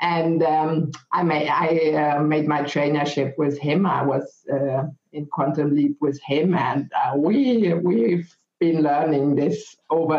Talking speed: 160 wpm